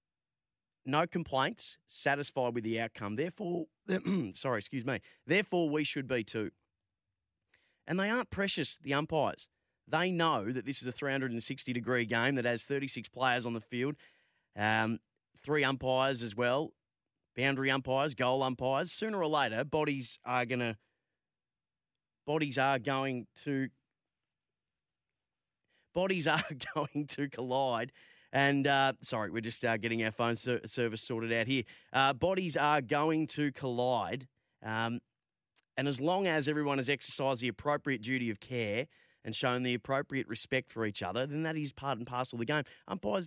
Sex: male